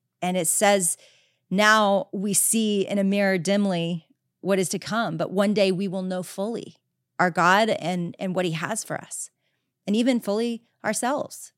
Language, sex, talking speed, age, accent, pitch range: English, female, 175 wpm, 30-49, American, 180-215 Hz